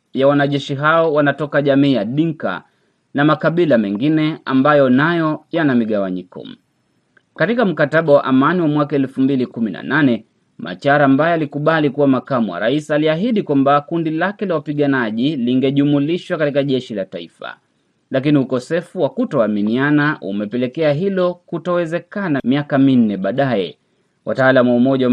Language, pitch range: Swahili, 125-150 Hz